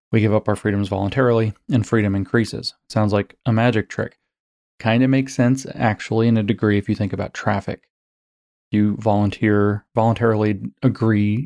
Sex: male